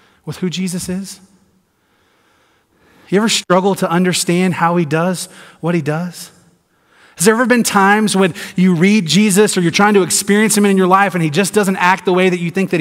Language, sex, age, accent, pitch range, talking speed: English, male, 30-49, American, 130-180 Hz, 205 wpm